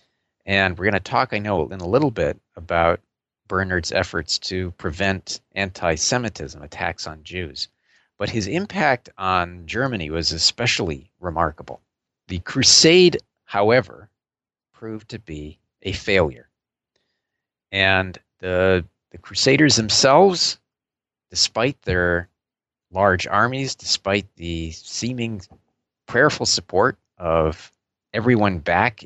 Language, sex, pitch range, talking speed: English, male, 85-110 Hz, 110 wpm